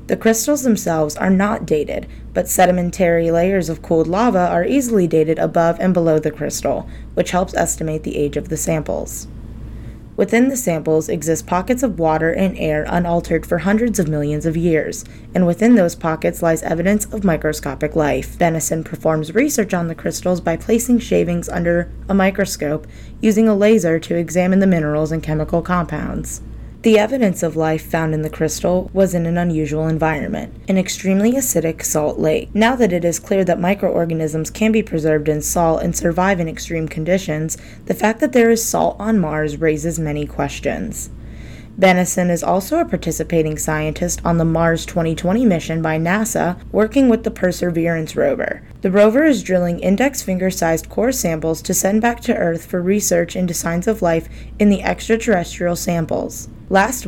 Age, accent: 20-39, American